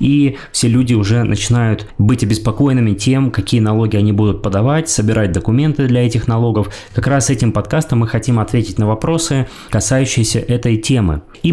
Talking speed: 160 wpm